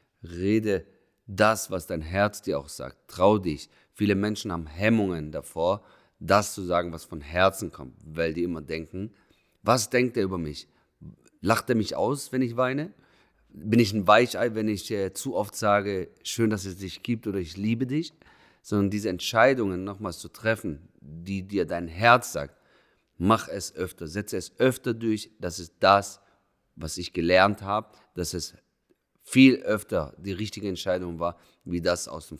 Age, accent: 40-59, German